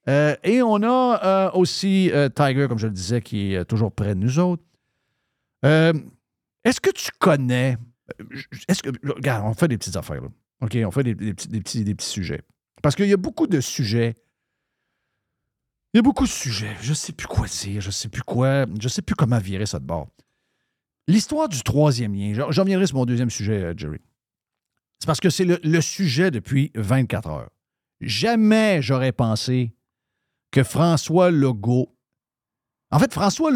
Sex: male